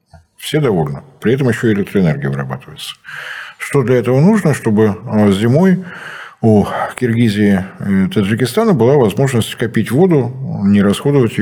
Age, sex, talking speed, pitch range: 50-69, male, 120 wpm, 100-135 Hz